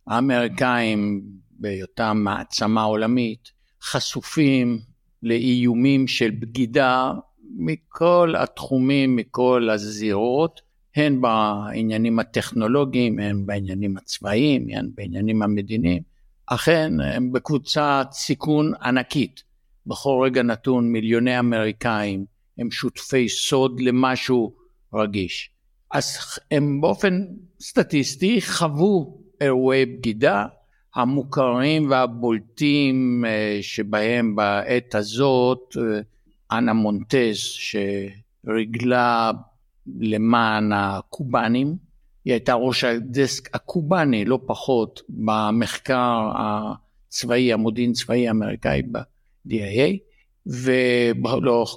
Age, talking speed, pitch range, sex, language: 60-79, 80 wpm, 110-130 Hz, male, Hebrew